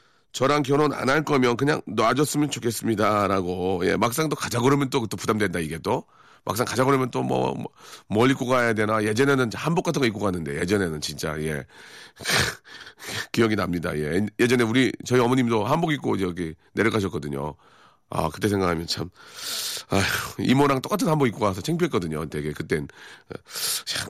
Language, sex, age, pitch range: Korean, male, 40-59, 95-135 Hz